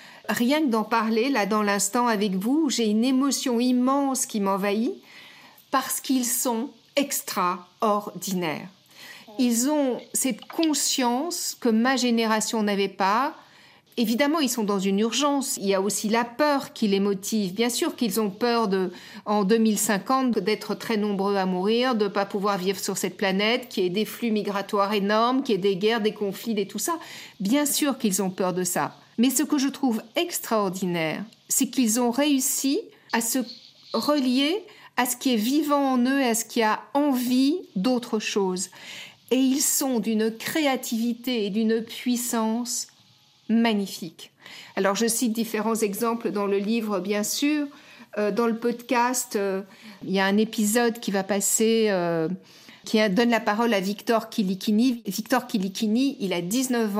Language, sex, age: French, female, 50-69